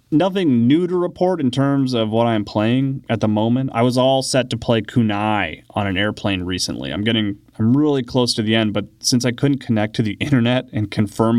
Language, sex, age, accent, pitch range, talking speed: English, male, 30-49, American, 105-130 Hz, 220 wpm